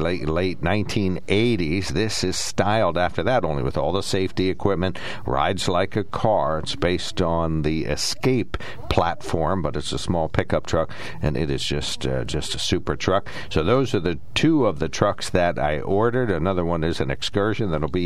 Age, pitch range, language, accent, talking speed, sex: 60-79, 75-100 Hz, English, American, 190 wpm, male